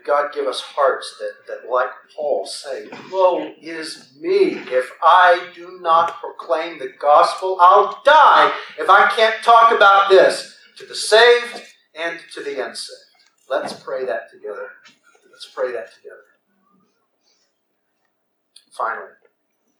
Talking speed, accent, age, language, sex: 130 wpm, American, 40-59, English, male